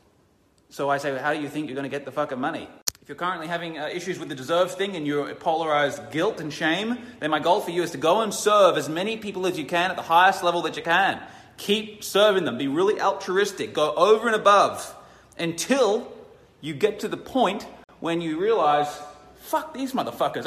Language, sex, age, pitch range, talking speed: English, male, 30-49, 140-200 Hz, 215 wpm